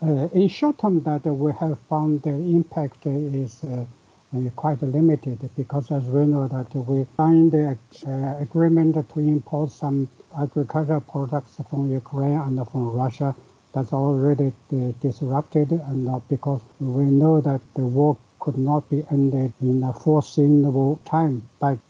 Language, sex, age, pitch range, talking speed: English, male, 60-79, 130-150 Hz, 150 wpm